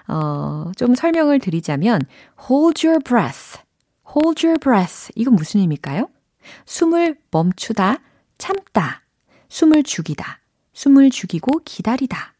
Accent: native